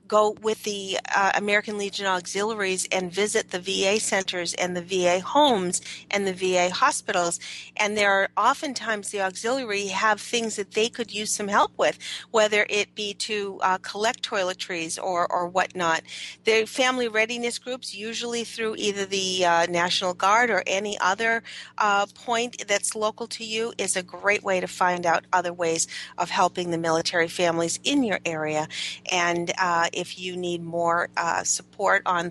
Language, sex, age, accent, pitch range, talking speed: English, female, 40-59, American, 180-220 Hz, 170 wpm